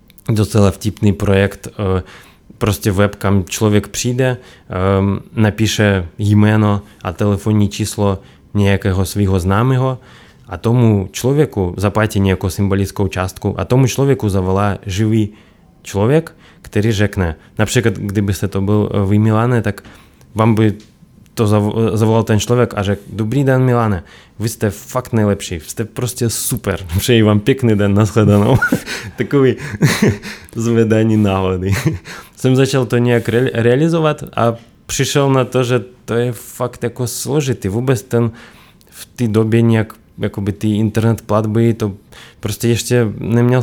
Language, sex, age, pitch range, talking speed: Czech, male, 20-39, 100-120 Hz, 130 wpm